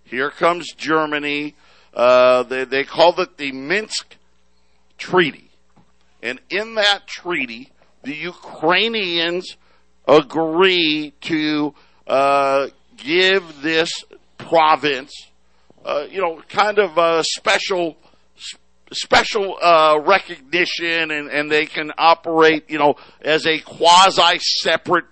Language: English